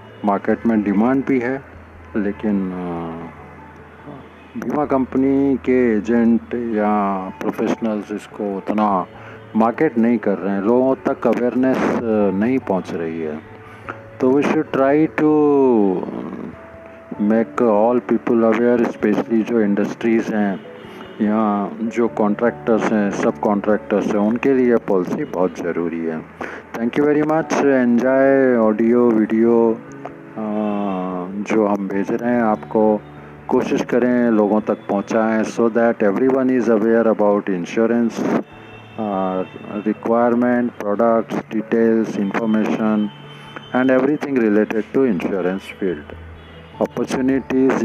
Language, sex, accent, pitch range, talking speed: Hindi, male, native, 100-120 Hz, 110 wpm